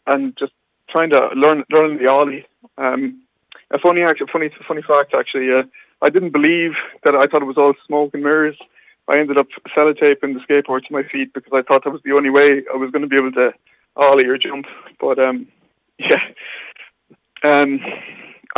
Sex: male